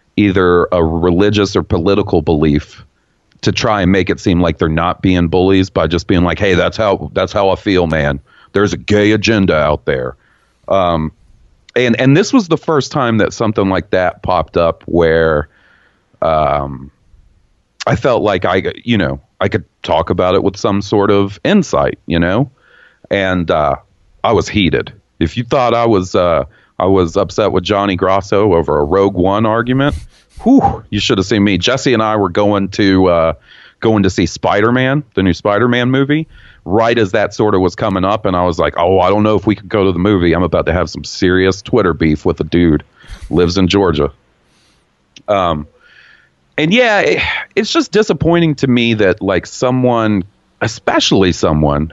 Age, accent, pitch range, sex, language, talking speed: 40-59, American, 90-115 Hz, male, English, 190 wpm